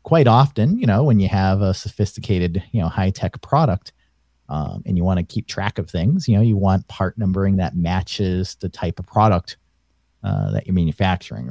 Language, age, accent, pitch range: English, 40-59, American, 85-105 Hz